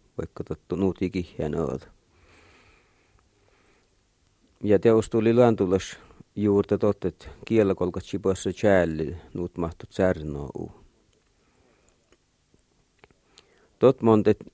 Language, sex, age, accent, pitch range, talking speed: Finnish, male, 50-69, native, 85-105 Hz, 80 wpm